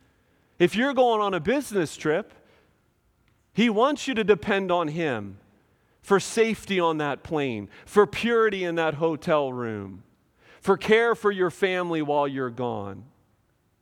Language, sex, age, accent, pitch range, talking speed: English, male, 40-59, American, 120-195 Hz, 145 wpm